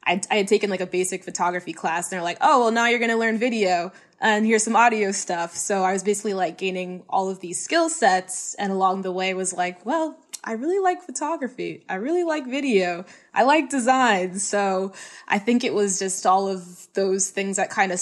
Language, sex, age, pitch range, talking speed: English, female, 20-39, 185-220 Hz, 220 wpm